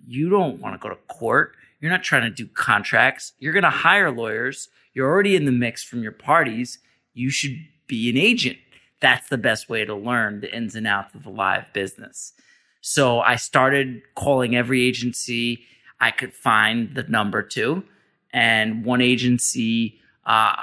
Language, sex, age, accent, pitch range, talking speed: English, male, 30-49, American, 120-130 Hz, 175 wpm